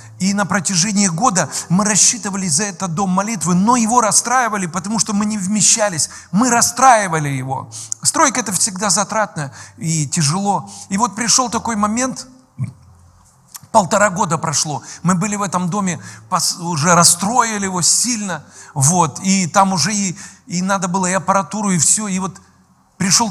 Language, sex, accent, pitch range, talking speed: Russian, male, native, 130-195 Hz, 150 wpm